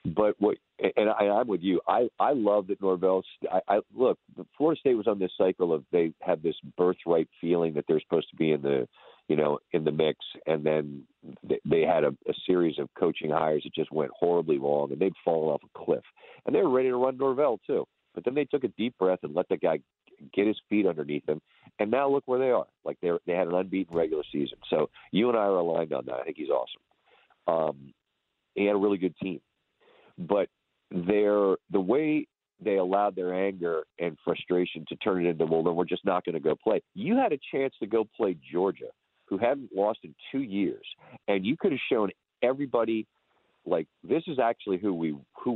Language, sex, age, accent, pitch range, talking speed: English, male, 50-69, American, 85-130 Hz, 220 wpm